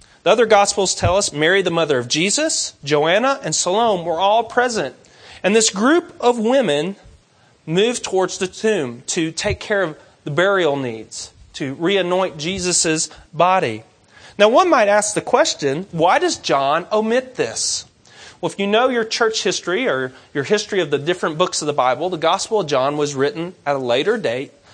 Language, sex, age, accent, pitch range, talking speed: English, male, 40-59, American, 145-210 Hz, 180 wpm